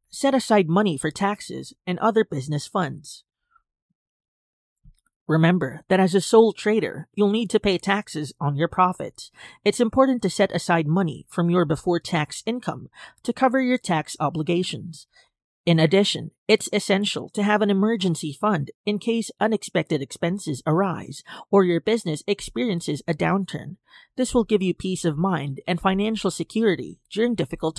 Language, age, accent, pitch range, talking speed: English, 30-49, American, 165-215 Hz, 150 wpm